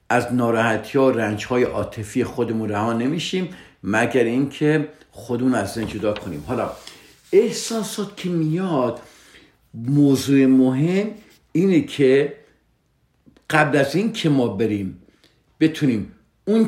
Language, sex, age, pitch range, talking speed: Persian, male, 50-69, 105-150 Hz, 110 wpm